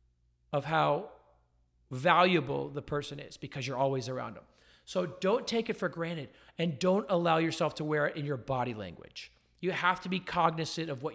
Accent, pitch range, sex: American, 135-185 Hz, male